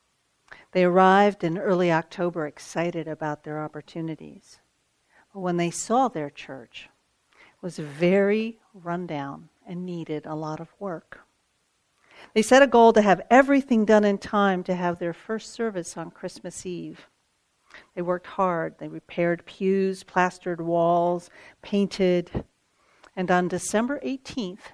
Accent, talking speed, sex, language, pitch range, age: American, 135 wpm, female, English, 170-210 Hz, 50-69